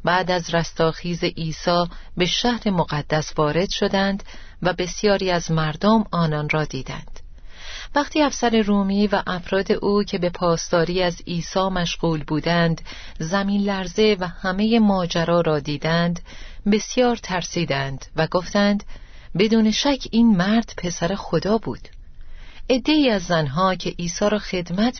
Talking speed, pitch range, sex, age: 130 wpm, 160-205 Hz, female, 40-59